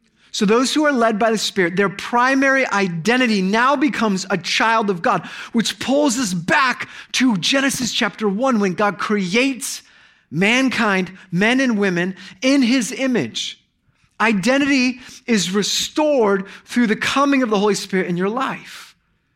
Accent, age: American, 30-49